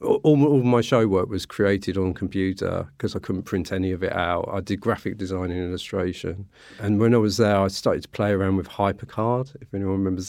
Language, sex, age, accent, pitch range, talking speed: English, male, 40-59, British, 95-110 Hz, 220 wpm